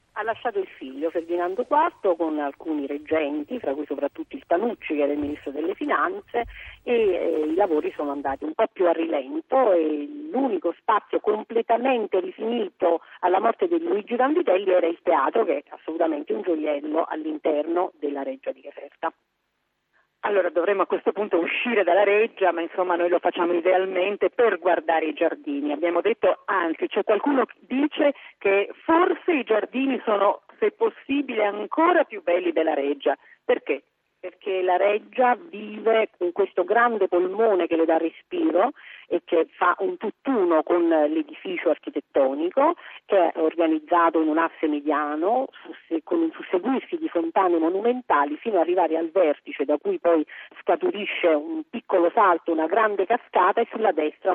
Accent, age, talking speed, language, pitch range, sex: native, 40-59, 160 wpm, Italian, 165-265 Hz, female